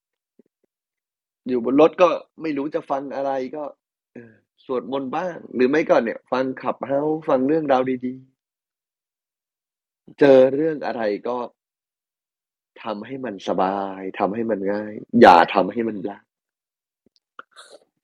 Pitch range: 105-130 Hz